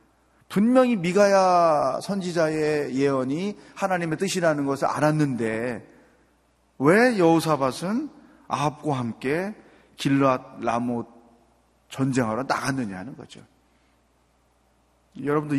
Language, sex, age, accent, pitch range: Korean, male, 30-49, native, 120-175 Hz